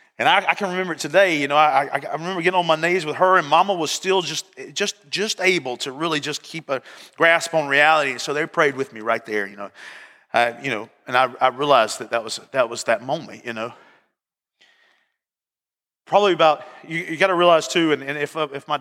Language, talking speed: English, 240 wpm